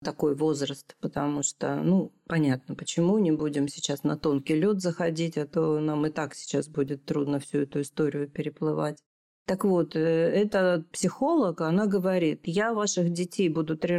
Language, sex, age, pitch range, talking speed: Russian, female, 40-59, 150-185 Hz, 160 wpm